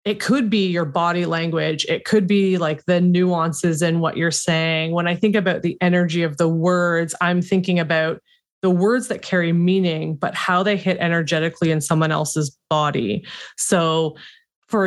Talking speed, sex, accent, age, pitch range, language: 180 wpm, female, American, 20-39, 165-200 Hz, English